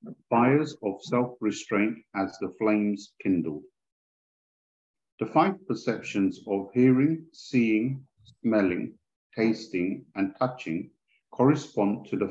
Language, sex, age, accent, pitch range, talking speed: English, male, 50-69, British, 95-120 Hz, 100 wpm